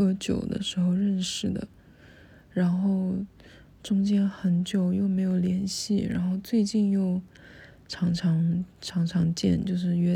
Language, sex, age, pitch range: Chinese, female, 20-39, 175-205 Hz